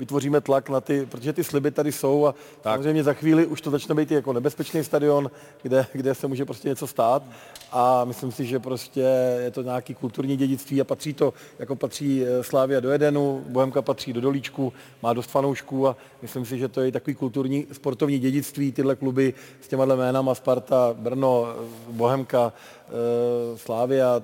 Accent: native